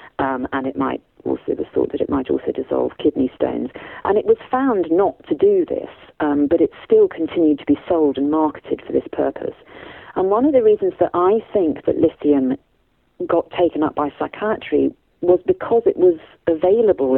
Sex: female